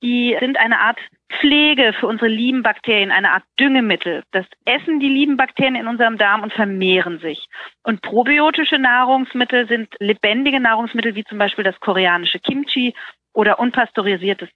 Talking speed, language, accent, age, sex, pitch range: 155 wpm, German, German, 40-59, female, 205-250 Hz